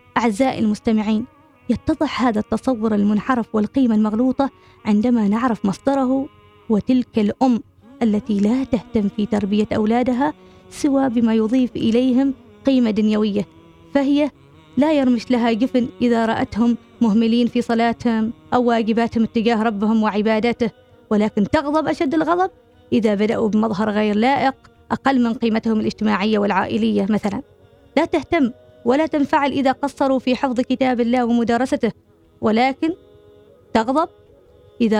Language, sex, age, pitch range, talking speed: Arabic, female, 20-39, 220-265 Hz, 120 wpm